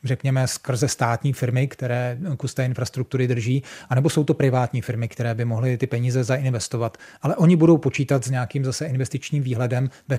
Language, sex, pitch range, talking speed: Czech, male, 125-135 Hz, 170 wpm